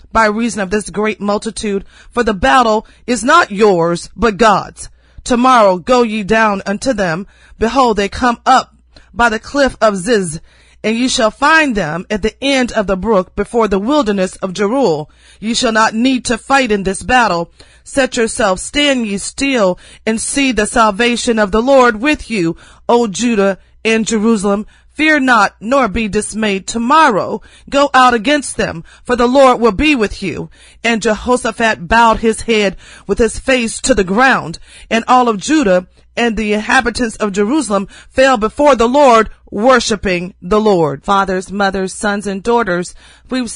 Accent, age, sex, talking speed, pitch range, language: American, 40-59, female, 170 wpm, 200-250 Hz, English